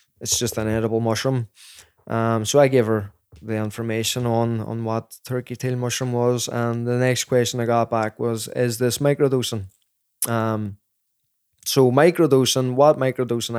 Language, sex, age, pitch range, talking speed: English, male, 20-39, 115-130 Hz, 155 wpm